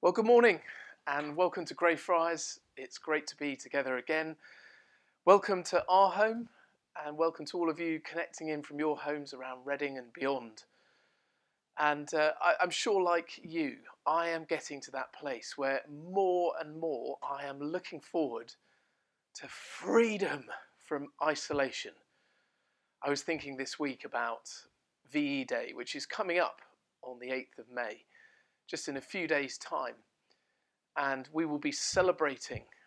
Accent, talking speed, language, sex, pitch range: British, 155 wpm, English, male, 140-175 Hz